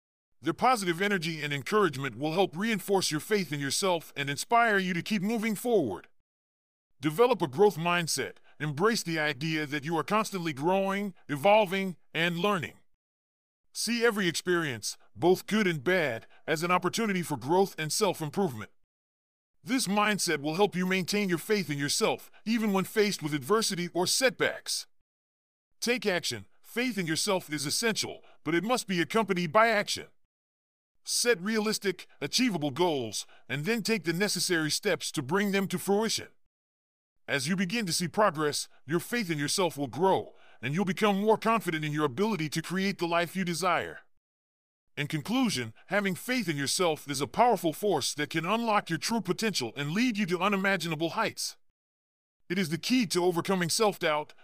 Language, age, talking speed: English, 40-59, 165 wpm